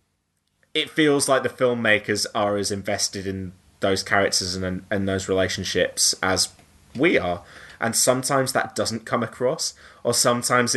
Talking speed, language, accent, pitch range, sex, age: 145 wpm, English, British, 95-120 Hz, male, 20-39